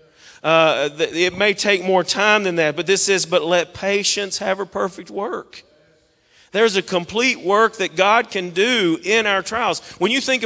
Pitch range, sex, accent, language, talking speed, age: 180-235 Hz, male, American, English, 185 wpm, 40-59